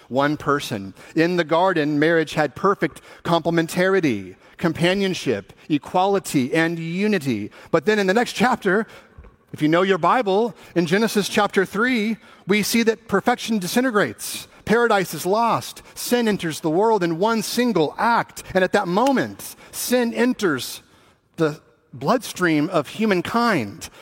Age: 40-59